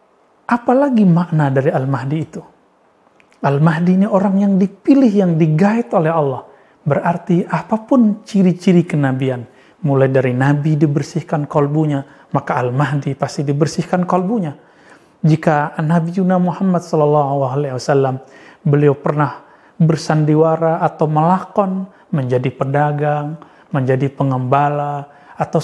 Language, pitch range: Indonesian, 145-180 Hz